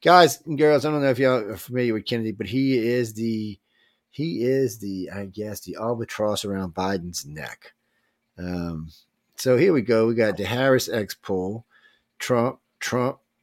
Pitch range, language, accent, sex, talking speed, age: 90-115 Hz, English, American, male, 175 wpm, 30-49